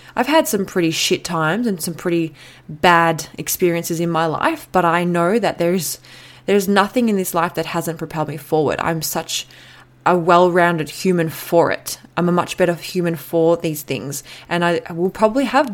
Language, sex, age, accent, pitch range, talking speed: English, female, 20-39, Australian, 160-195 Hz, 185 wpm